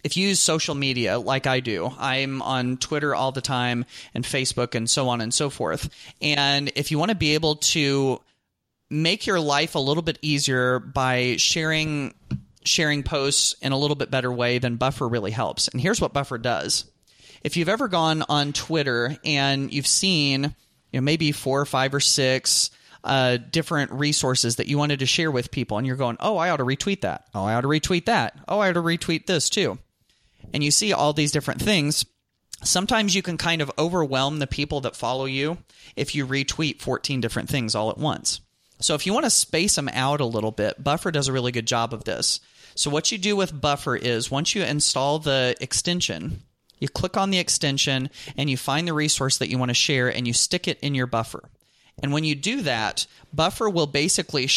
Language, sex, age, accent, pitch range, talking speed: English, male, 30-49, American, 125-155 Hz, 210 wpm